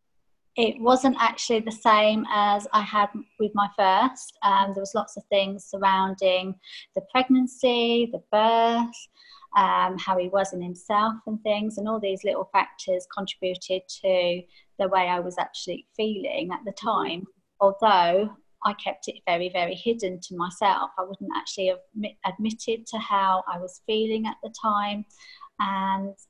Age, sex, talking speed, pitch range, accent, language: 30-49, female, 155 wpm, 195-230 Hz, British, English